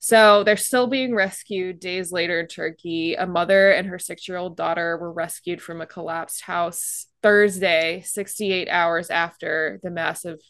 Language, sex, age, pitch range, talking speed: English, female, 20-39, 170-195 Hz, 155 wpm